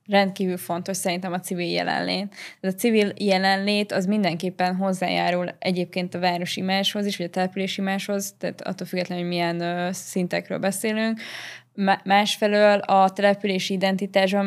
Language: Hungarian